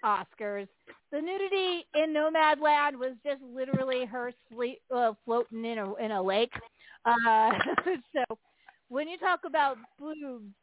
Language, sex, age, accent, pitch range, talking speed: English, female, 40-59, American, 225-300 Hz, 135 wpm